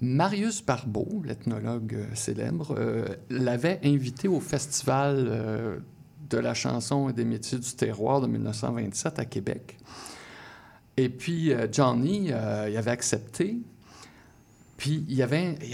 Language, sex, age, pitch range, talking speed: French, male, 60-79, 115-150 Hz, 135 wpm